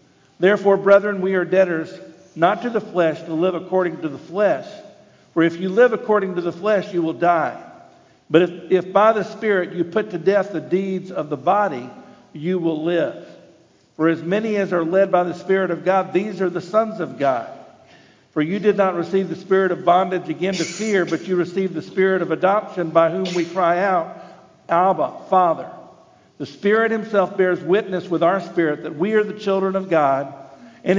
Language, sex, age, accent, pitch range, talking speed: English, male, 50-69, American, 165-195 Hz, 200 wpm